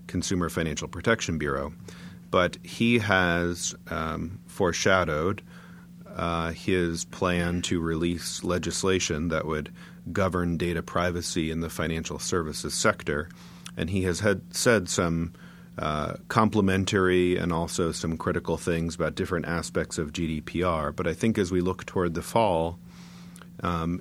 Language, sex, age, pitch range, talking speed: English, male, 40-59, 80-95 Hz, 130 wpm